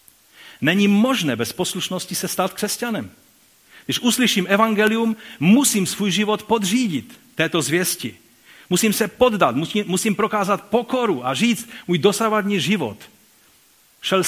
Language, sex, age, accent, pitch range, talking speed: Czech, male, 40-59, native, 155-210 Hz, 120 wpm